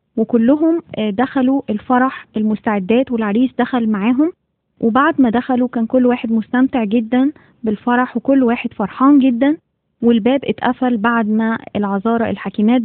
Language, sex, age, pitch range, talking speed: Arabic, female, 20-39, 225-255 Hz, 120 wpm